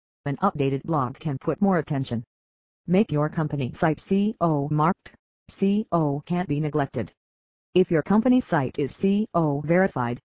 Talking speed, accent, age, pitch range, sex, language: 140 wpm, American, 40-59, 140-185 Hz, female, English